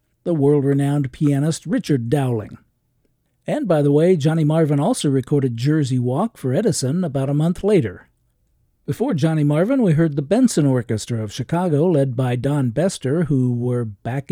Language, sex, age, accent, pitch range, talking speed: English, male, 50-69, American, 130-160 Hz, 160 wpm